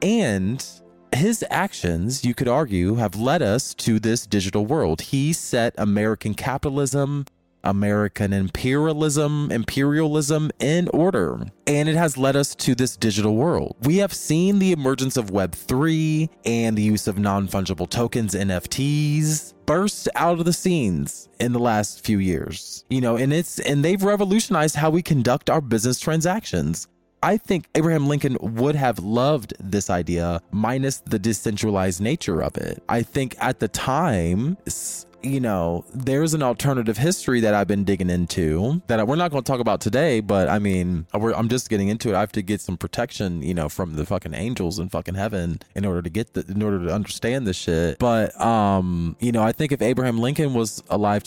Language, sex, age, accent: English, male, 20-39, American